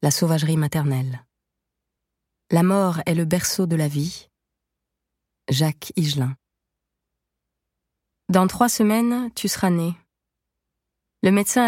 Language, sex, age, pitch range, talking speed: French, female, 30-49, 145-185 Hz, 110 wpm